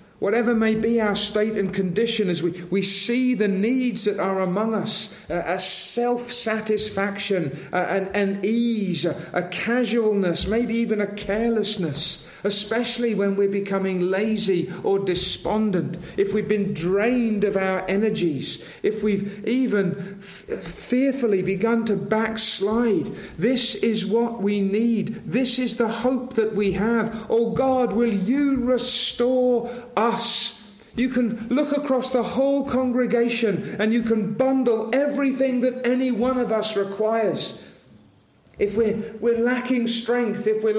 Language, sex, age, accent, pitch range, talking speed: English, male, 40-59, British, 205-245 Hz, 140 wpm